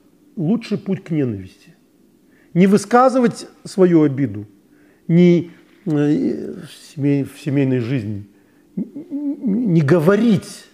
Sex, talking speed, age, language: male, 100 wpm, 40-59, Russian